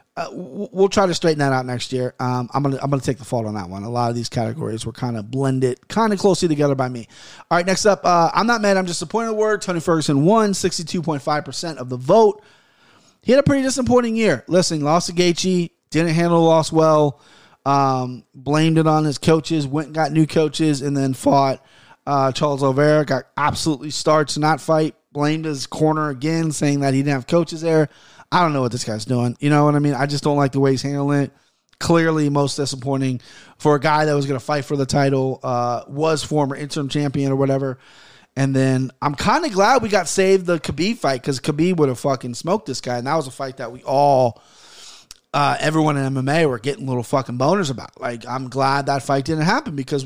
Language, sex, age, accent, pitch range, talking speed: English, male, 30-49, American, 135-170 Hz, 235 wpm